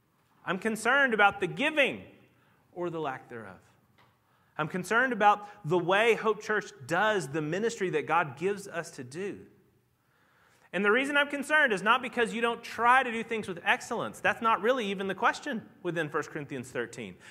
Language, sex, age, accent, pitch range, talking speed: English, male, 30-49, American, 165-230 Hz, 175 wpm